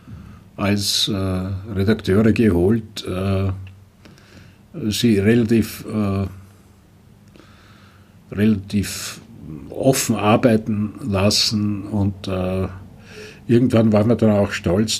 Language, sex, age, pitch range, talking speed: German, male, 60-79, 95-110 Hz, 80 wpm